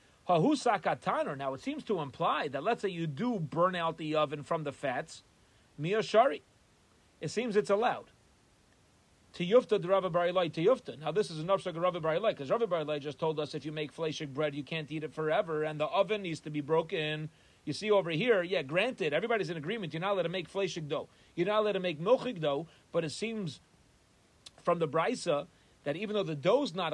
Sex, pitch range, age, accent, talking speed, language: male, 150-195 Hz, 30-49, American, 195 wpm, English